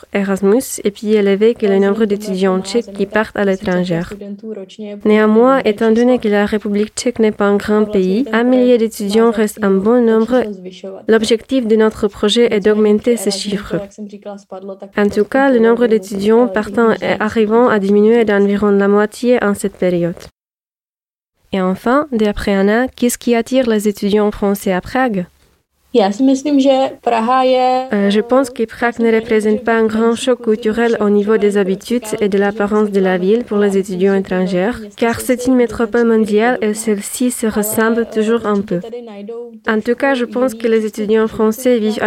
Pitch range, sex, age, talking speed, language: 205-230 Hz, female, 20-39, 165 wpm, French